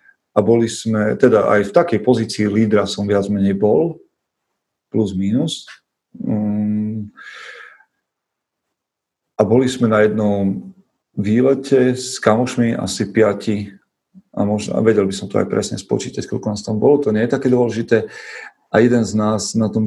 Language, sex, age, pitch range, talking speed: Slovak, male, 40-59, 100-115 Hz, 150 wpm